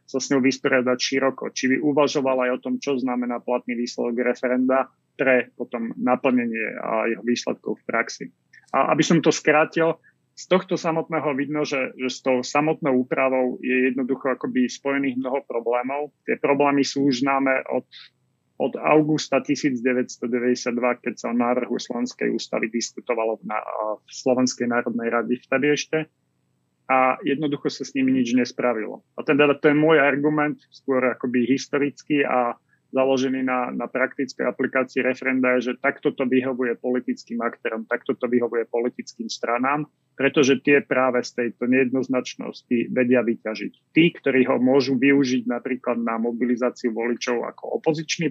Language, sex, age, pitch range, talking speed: Slovak, male, 30-49, 125-140 Hz, 155 wpm